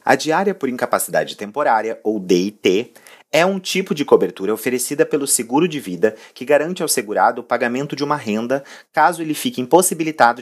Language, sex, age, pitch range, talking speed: Portuguese, male, 30-49, 120-160 Hz, 175 wpm